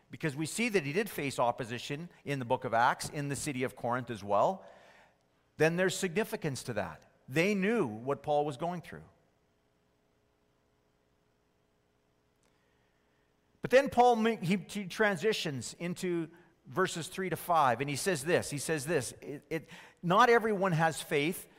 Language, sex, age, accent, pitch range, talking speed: English, male, 50-69, American, 140-195 Hz, 145 wpm